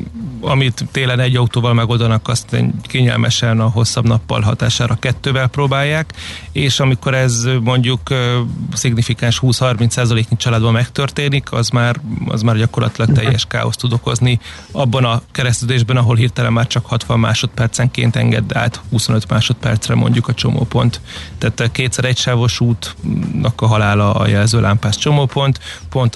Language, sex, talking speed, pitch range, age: Hungarian, male, 140 wpm, 115-130 Hz, 30-49